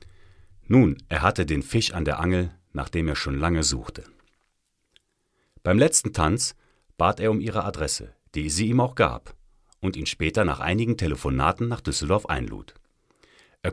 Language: German